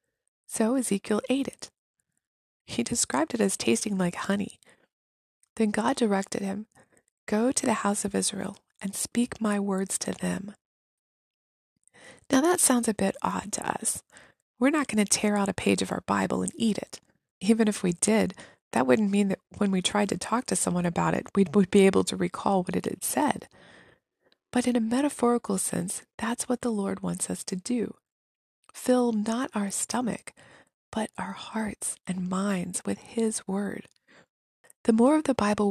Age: 20-39